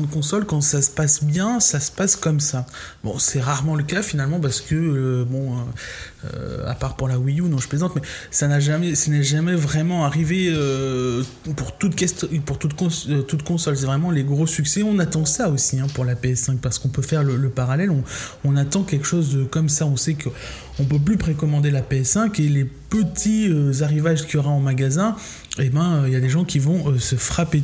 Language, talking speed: French, 230 wpm